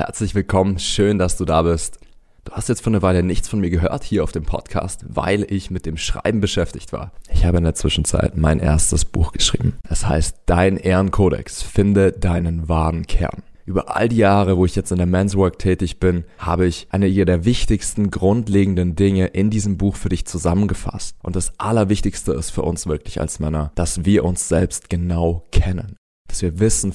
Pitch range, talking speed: 85-100 Hz, 200 wpm